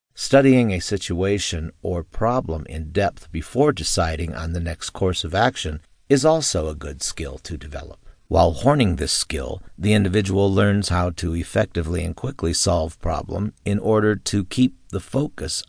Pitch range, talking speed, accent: 85-105 Hz, 160 wpm, American